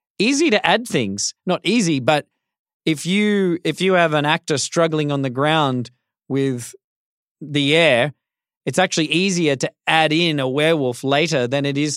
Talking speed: 165 wpm